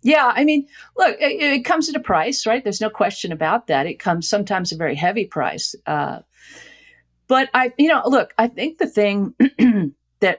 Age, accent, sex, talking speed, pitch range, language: 50-69, American, female, 200 wpm, 165-215 Hz, English